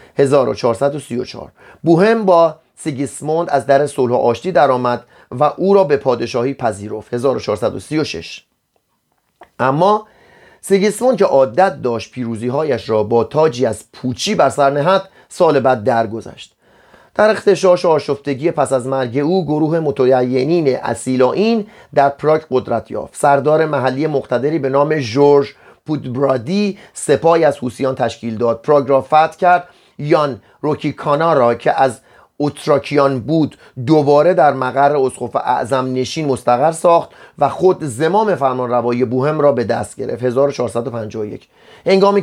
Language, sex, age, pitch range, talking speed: Persian, male, 40-59, 130-165 Hz, 130 wpm